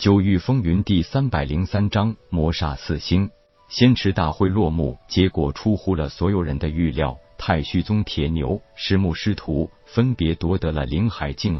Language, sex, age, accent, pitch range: Chinese, male, 50-69, native, 80-100 Hz